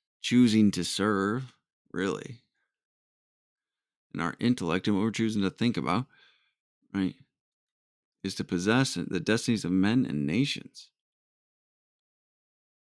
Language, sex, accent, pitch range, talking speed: English, male, American, 90-115 Hz, 110 wpm